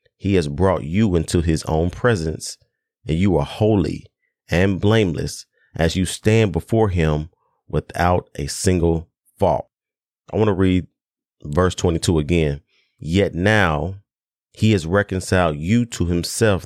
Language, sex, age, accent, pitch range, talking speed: English, male, 30-49, American, 85-110 Hz, 135 wpm